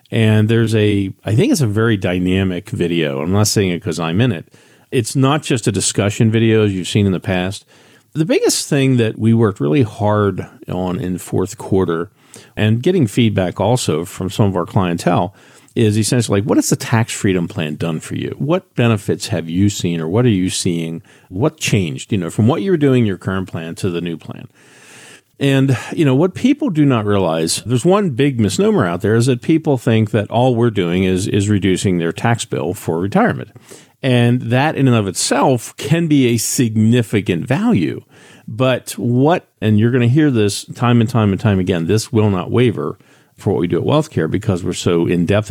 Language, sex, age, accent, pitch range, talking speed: English, male, 50-69, American, 95-125 Hz, 210 wpm